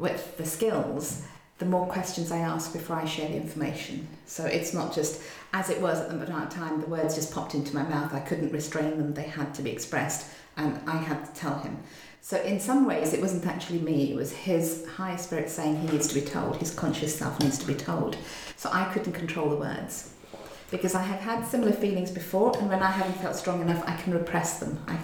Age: 40-59